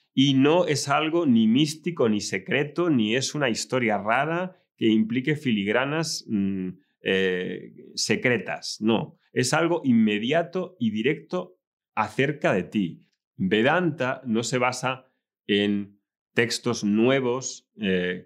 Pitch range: 110-155 Hz